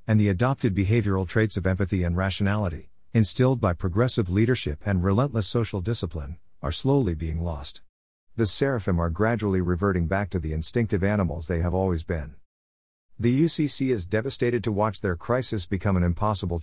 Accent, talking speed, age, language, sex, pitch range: American, 165 wpm, 50-69, English, male, 85-115 Hz